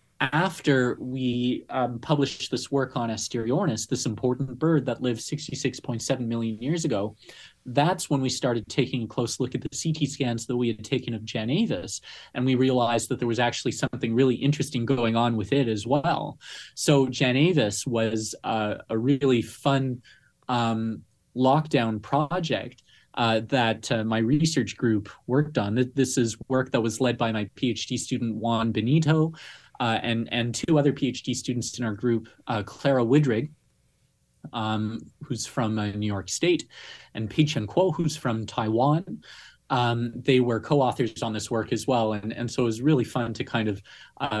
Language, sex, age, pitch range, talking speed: English, male, 30-49, 110-135 Hz, 170 wpm